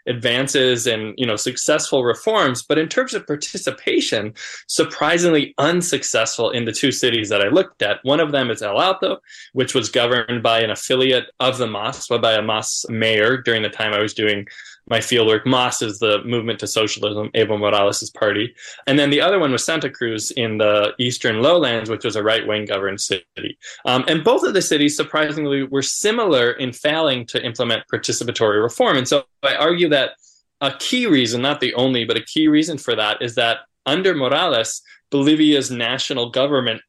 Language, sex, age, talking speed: English, male, 20-39, 185 wpm